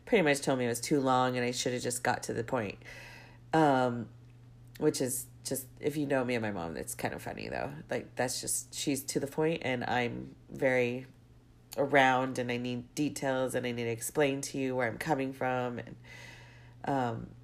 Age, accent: 40-59, American